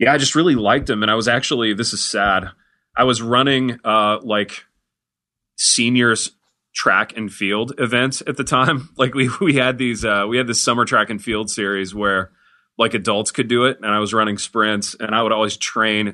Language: English